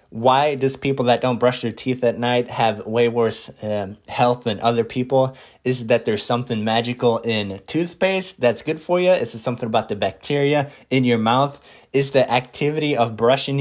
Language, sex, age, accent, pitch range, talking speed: English, male, 20-39, American, 120-140 Hz, 190 wpm